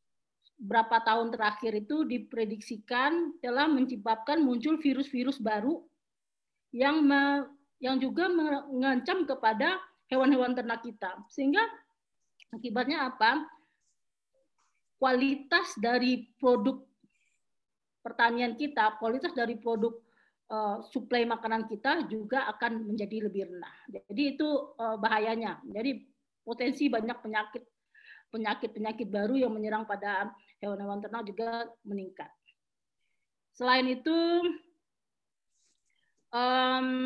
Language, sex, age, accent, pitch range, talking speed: Indonesian, female, 40-59, native, 225-275 Hz, 95 wpm